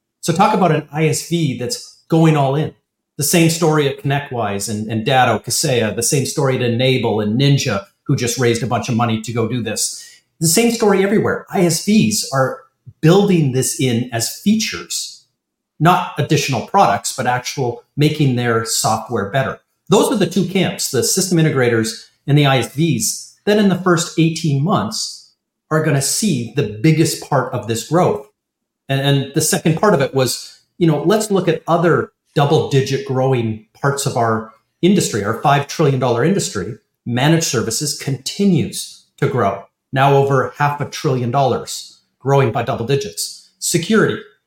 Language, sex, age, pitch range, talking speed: English, male, 40-59, 120-165 Hz, 165 wpm